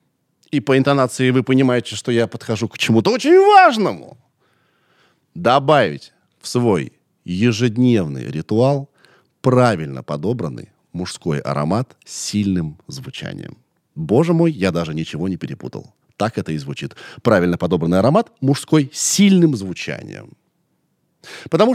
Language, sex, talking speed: Russian, male, 120 wpm